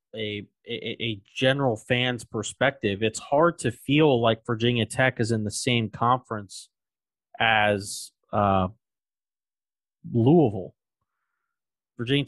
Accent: American